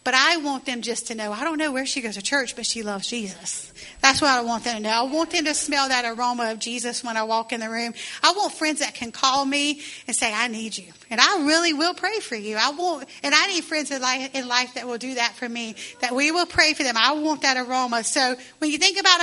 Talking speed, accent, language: 285 wpm, American, English